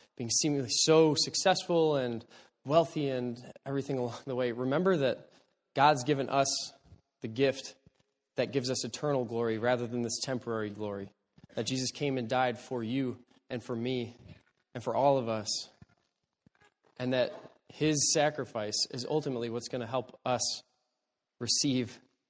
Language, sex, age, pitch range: English, male, 20-39, 125-160 Hz